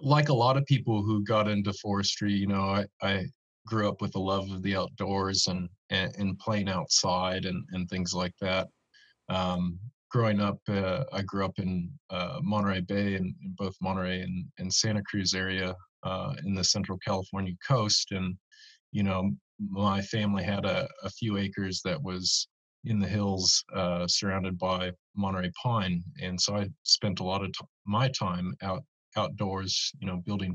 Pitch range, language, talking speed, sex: 95-105 Hz, English, 180 wpm, male